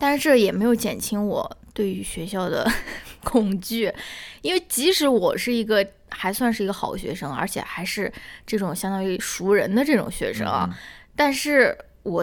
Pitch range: 195-250 Hz